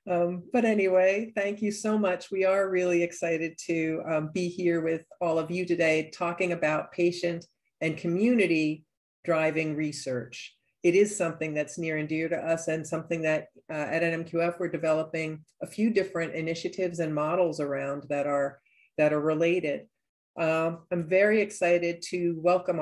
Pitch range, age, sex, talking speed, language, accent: 155-180 Hz, 40-59, female, 165 wpm, English, American